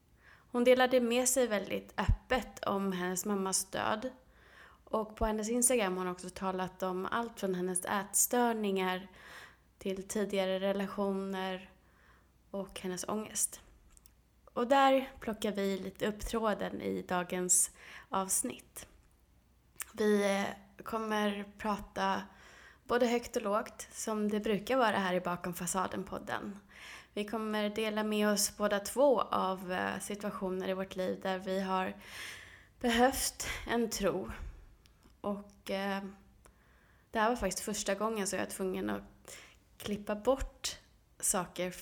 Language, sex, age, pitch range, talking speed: Swedish, female, 20-39, 190-220 Hz, 125 wpm